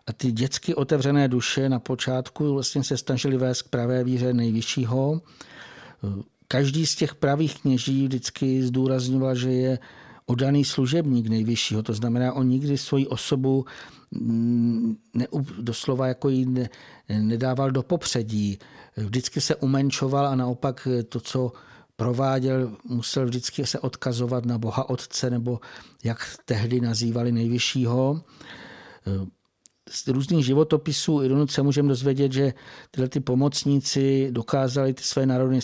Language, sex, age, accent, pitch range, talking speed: Czech, male, 50-69, native, 120-140 Hz, 125 wpm